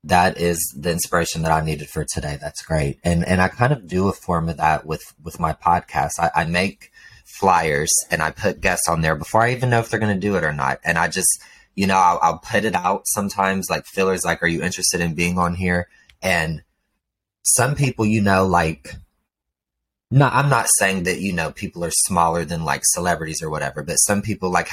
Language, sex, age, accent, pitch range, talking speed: English, male, 20-39, American, 85-95 Hz, 225 wpm